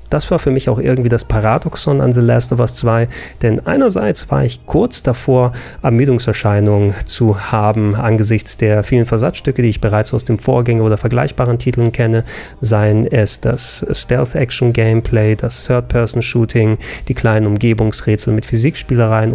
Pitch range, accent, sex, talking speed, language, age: 110-125 Hz, German, male, 150 wpm, German, 30-49